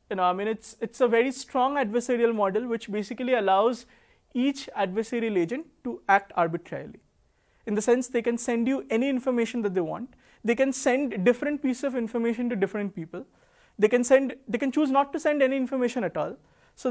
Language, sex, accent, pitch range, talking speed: English, male, Indian, 205-260 Hz, 200 wpm